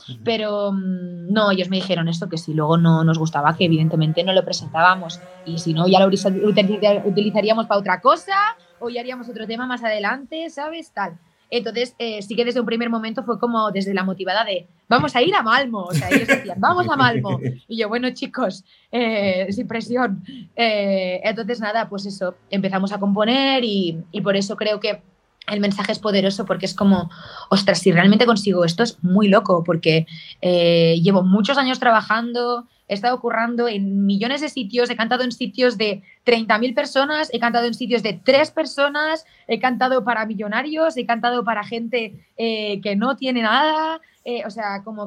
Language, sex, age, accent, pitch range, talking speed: Spanish, female, 20-39, Spanish, 195-240 Hz, 190 wpm